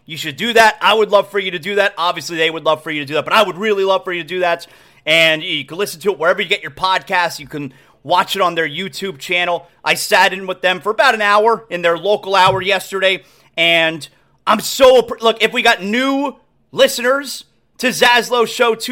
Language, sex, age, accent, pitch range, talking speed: English, male, 30-49, American, 160-220 Hz, 240 wpm